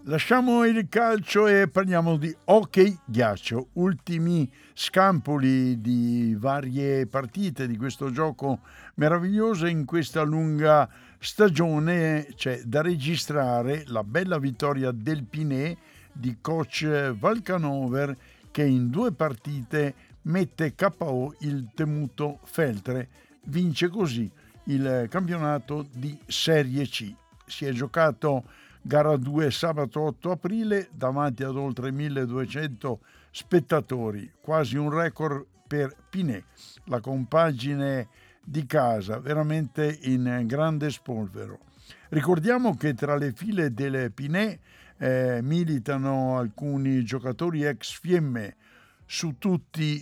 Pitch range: 130-165 Hz